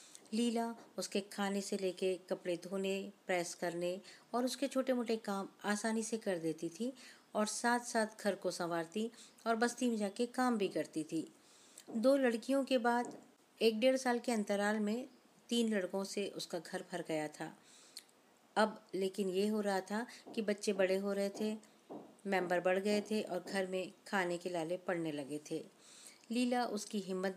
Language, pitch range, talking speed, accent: Hindi, 180-225 Hz, 175 wpm, native